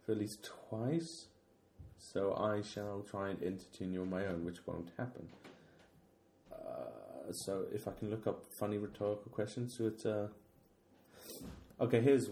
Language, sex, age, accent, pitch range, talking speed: English, male, 30-49, British, 90-110 Hz, 155 wpm